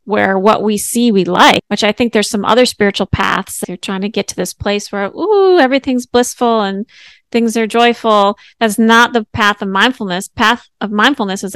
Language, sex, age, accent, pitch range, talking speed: English, female, 30-49, American, 200-245 Hz, 200 wpm